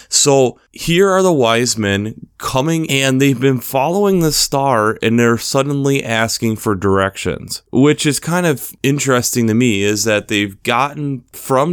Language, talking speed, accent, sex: English, 160 wpm, American, male